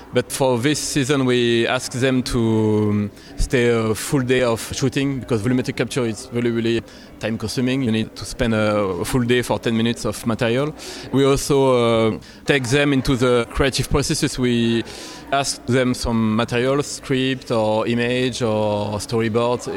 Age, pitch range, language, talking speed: 20-39, 110-130 Hz, English, 160 wpm